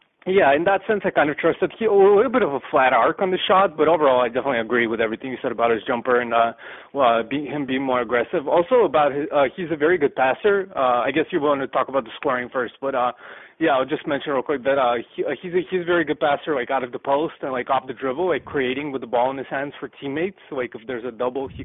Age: 20-39